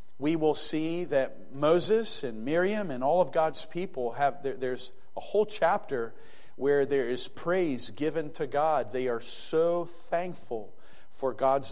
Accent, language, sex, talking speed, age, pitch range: American, English, male, 160 wpm, 40-59, 130-170 Hz